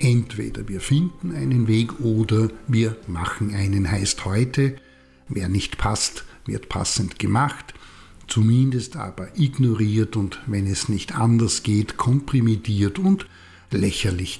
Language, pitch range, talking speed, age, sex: German, 100-130 Hz, 120 wpm, 60-79, male